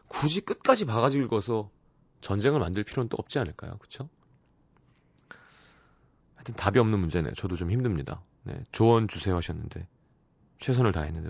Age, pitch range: 30-49, 95-145 Hz